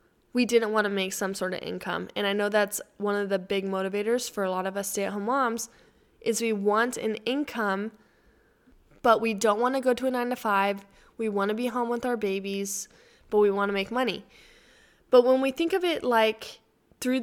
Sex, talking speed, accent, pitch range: female, 215 wpm, American, 200-240 Hz